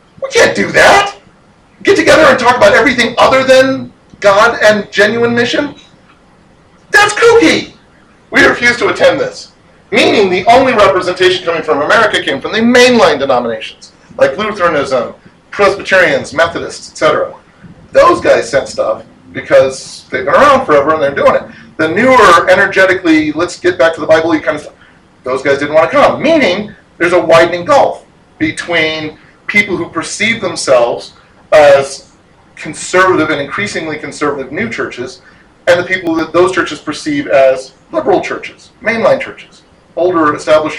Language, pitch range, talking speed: English, 135-200 Hz, 150 wpm